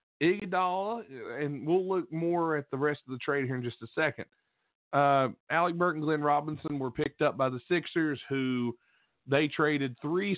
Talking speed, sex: 185 wpm, male